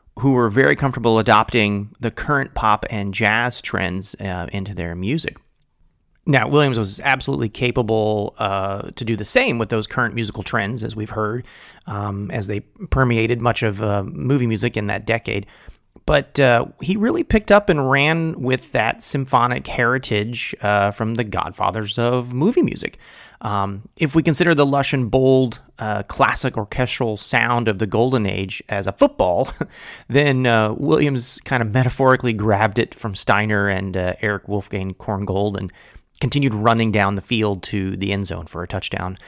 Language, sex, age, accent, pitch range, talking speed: English, male, 30-49, American, 100-130 Hz, 170 wpm